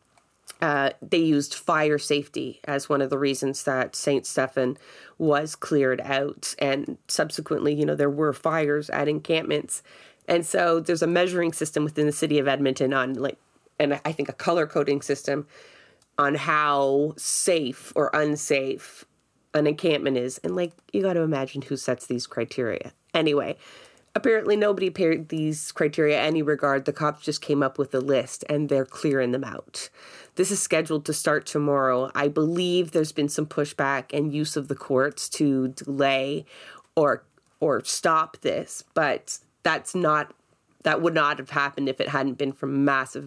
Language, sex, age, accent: English, female, 30-49, American